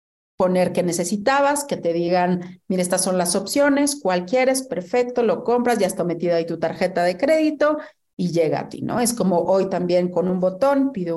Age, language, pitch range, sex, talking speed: 40-59, Spanish, 175-225 Hz, female, 200 wpm